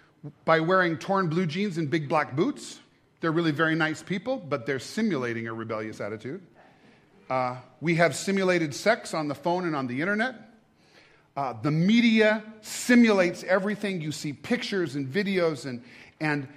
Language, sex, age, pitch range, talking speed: English, male, 40-59, 150-205 Hz, 160 wpm